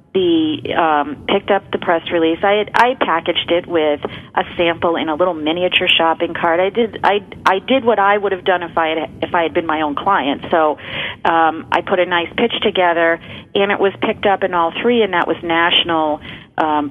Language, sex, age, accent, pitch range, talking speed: English, female, 40-59, American, 165-195 Hz, 220 wpm